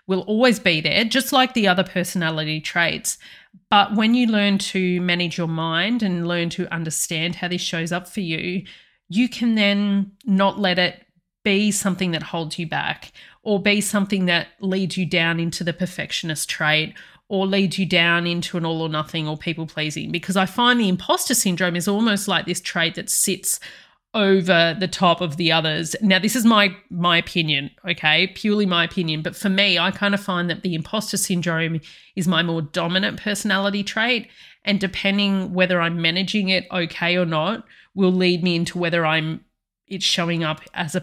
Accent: Australian